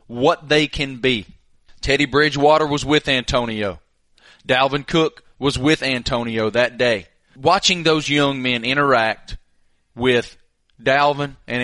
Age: 30-49